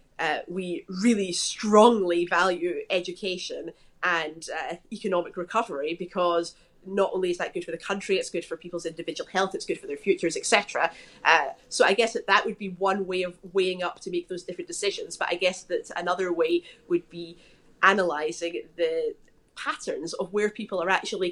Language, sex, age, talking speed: English, female, 20-39, 185 wpm